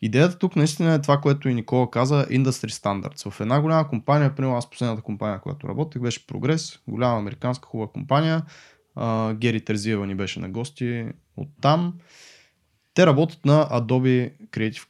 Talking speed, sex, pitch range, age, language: 165 wpm, male, 110-145 Hz, 20-39, Bulgarian